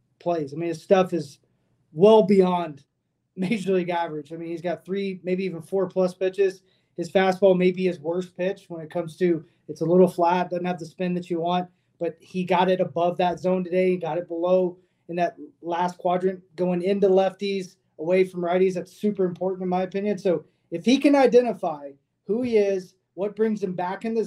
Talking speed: 210 wpm